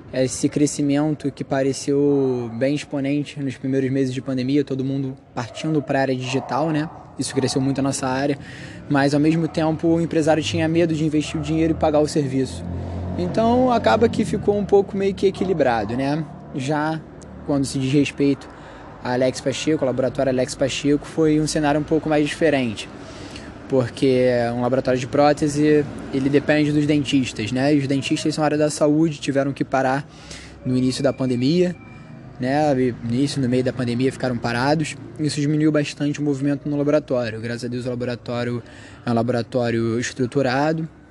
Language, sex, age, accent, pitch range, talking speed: Portuguese, male, 20-39, Brazilian, 125-150 Hz, 170 wpm